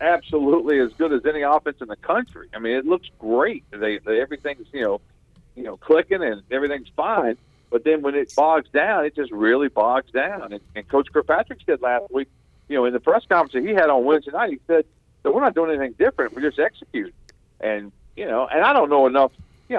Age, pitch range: 50-69, 125-165 Hz